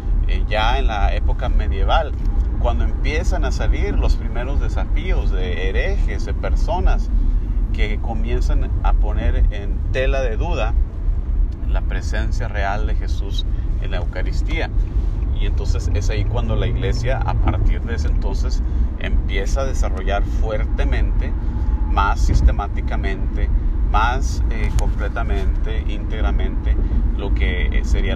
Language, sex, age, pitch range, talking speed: Spanish, male, 40-59, 70-90 Hz, 125 wpm